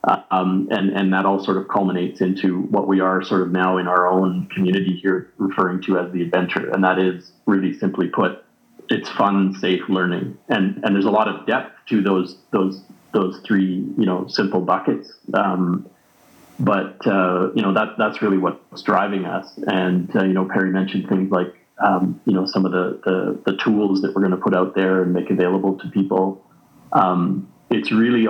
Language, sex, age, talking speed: English, male, 30-49, 200 wpm